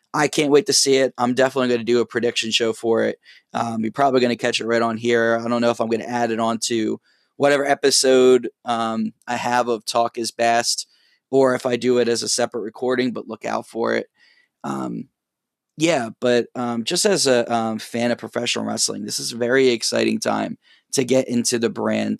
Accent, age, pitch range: American, 20-39, 115-130 Hz